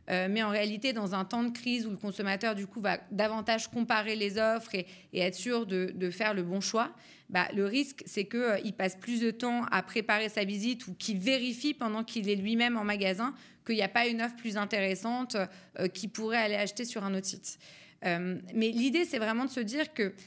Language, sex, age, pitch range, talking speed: French, female, 30-49, 195-240 Hz, 230 wpm